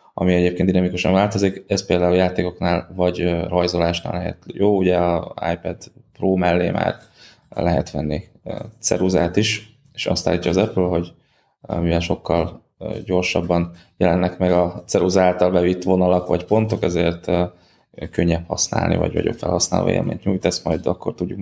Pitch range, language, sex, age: 90-100 Hz, Hungarian, male, 20-39